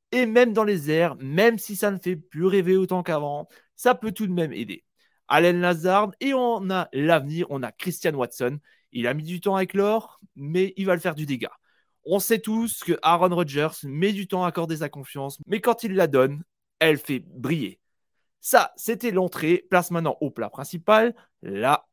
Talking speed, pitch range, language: 205 wpm, 155-205 Hz, French